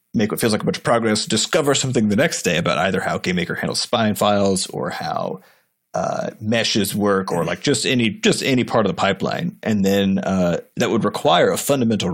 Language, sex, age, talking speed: English, male, 30-49, 215 wpm